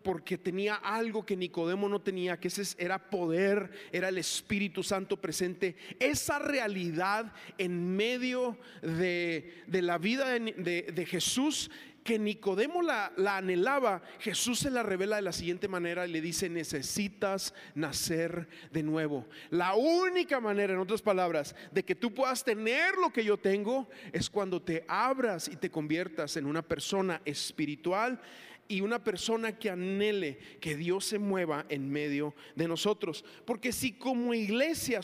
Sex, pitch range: male, 180-240 Hz